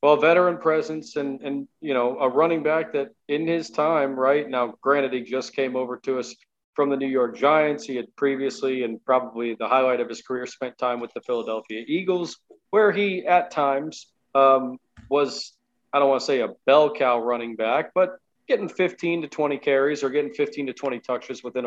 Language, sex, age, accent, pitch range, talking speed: English, male, 40-59, American, 125-150 Hz, 200 wpm